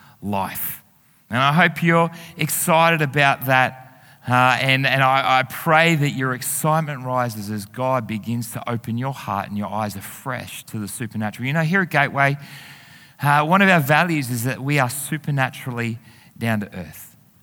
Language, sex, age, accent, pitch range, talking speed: English, male, 30-49, Australian, 120-160 Hz, 170 wpm